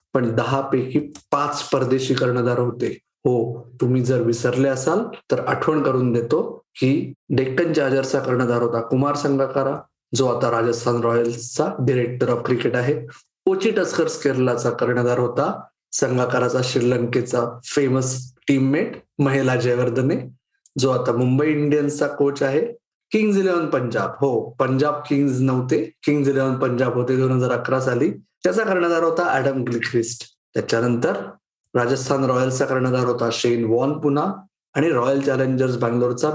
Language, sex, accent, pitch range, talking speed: Marathi, male, native, 125-145 Hz, 130 wpm